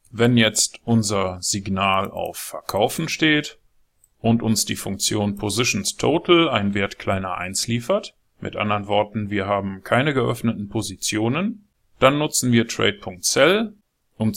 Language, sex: German, male